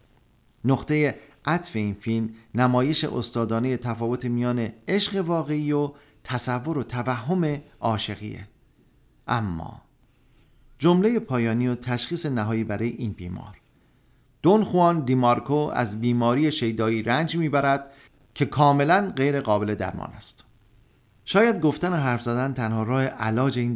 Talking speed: 115 wpm